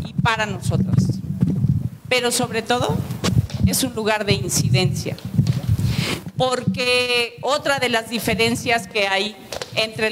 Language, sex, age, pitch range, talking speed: Spanish, female, 40-59, 205-255 Hz, 105 wpm